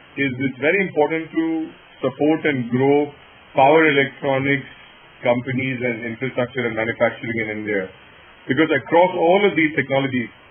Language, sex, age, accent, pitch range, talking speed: English, male, 30-49, Indian, 115-135 Hz, 130 wpm